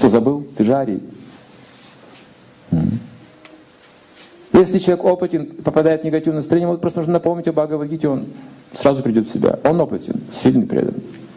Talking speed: 135 wpm